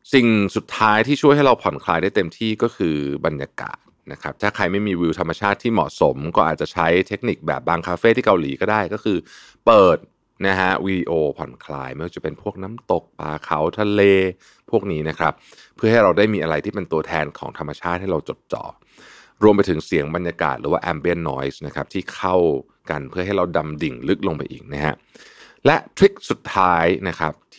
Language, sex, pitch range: Thai, male, 80-110 Hz